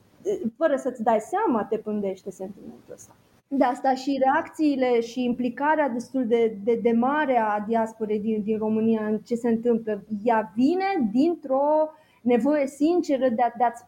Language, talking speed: Romanian, 160 wpm